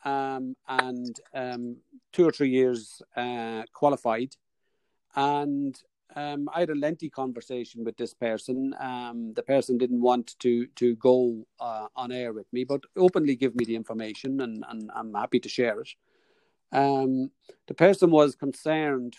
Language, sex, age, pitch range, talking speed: English, male, 40-59, 115-140 Hz, 155 wpm